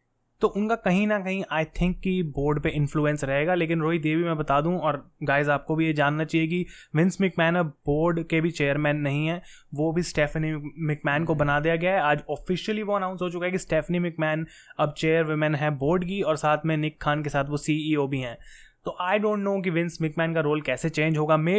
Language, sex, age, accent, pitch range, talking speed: Hindi, male, 20-39, native, 150-175 Hz, 230 wpm